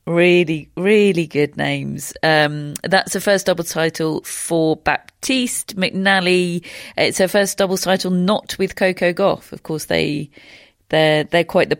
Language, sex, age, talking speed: English, female, 40-59, 150 wpm